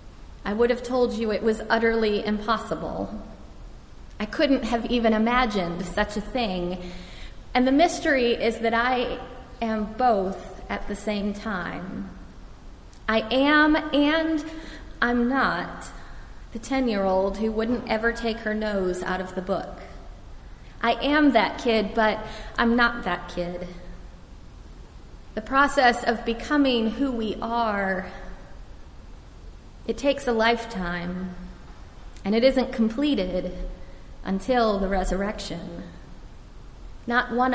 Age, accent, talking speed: 30-49, American, 120 wpm